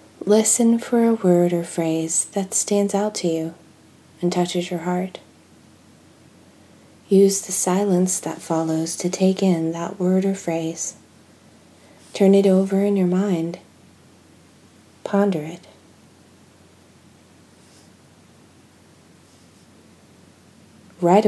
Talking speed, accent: 100 wpm, American